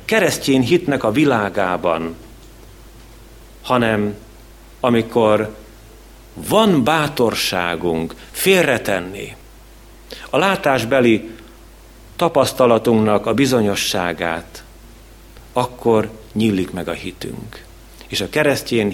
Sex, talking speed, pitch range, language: male, 70 wpm, 100-120 Hz, Hungarian